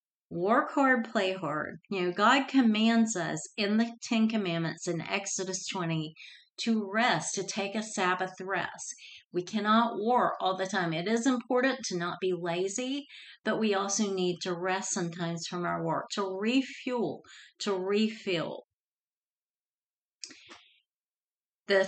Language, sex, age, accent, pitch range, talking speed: English, female, 40-59, American, 185-230 Hz, 140 wpm